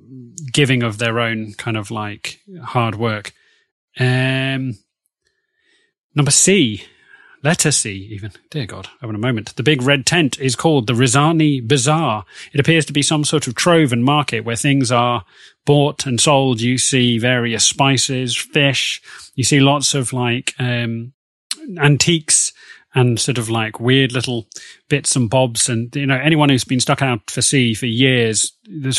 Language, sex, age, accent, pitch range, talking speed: English, male, 30-49, British, 115-140 Hz, 165 wpm